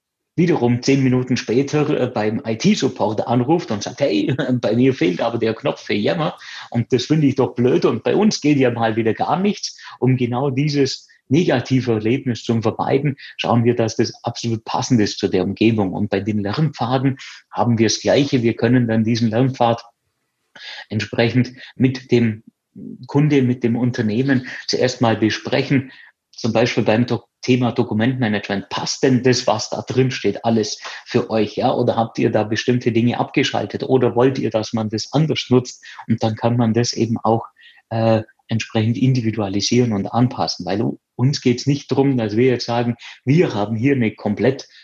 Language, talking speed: German, 175 wpm